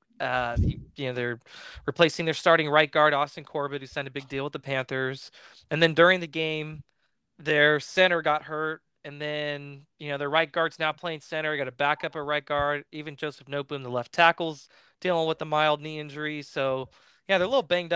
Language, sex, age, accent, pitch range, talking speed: English, male, 20-39, American, 140-165 Hz, 210 wpm